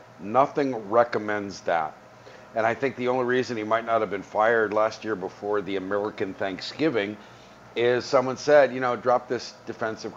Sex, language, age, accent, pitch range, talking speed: male, English, 50-69, American, 100-130 Hz, 170 wpm